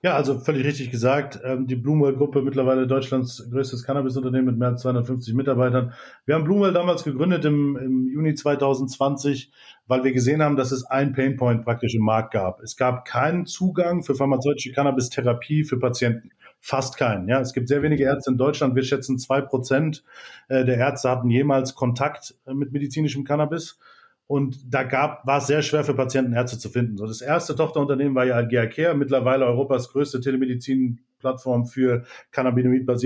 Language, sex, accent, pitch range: German, male, German, 125-145 Hz